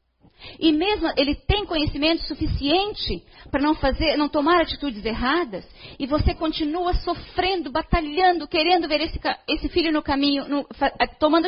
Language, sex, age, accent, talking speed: Portuguese, female, 40-59, Brazilian, 135 wpm